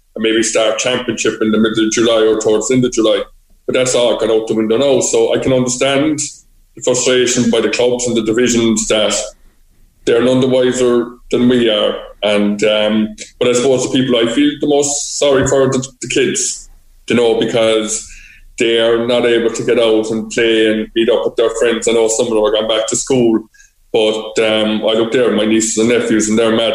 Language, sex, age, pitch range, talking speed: English, male, 20-39, 110-130 Hz, 230 wpm